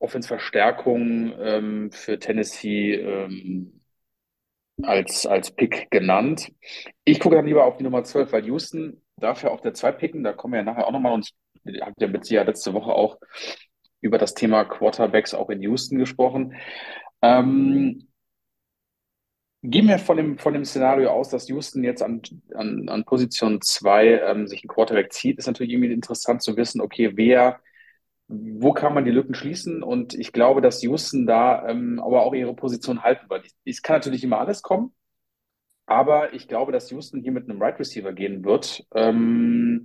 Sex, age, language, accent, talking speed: male, 30-49, German, German, 165 wpm